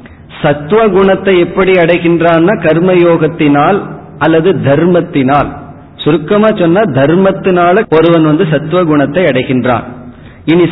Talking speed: 85 wpm